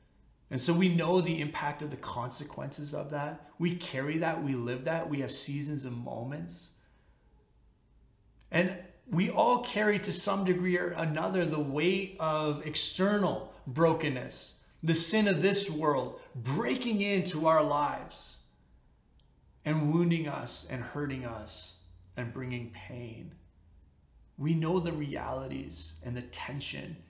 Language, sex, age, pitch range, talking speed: English, male, 30-49, 130-195 Hz, 135 wpm